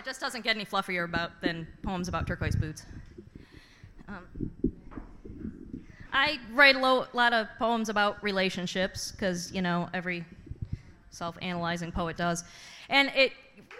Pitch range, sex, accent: 195-265 Hz, female, American